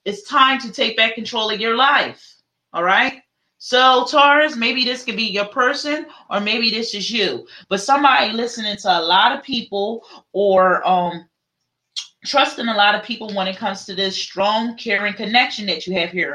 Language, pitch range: English, 190-235 Hz